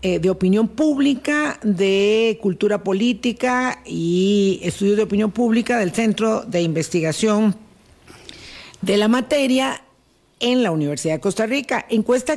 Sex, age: female, 50-69